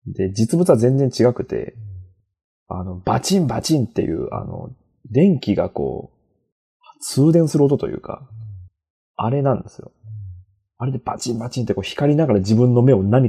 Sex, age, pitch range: male, 20-39, 100-125 Hz